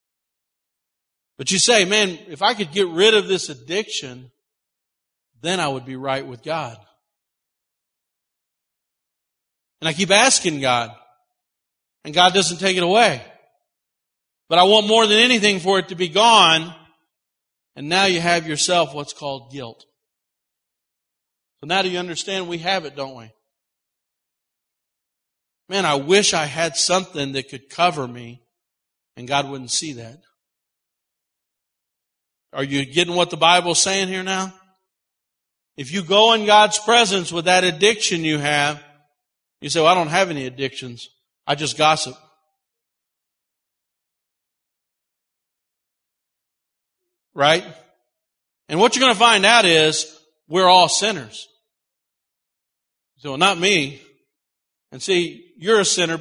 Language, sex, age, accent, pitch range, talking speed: English, male, 50-69, American, 145-210 Hz, 135 wpm